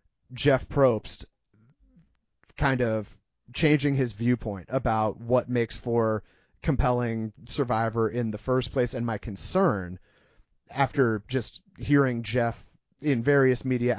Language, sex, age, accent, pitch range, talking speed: English, male, 30-49, American, 115-140 Hz, 115 wpm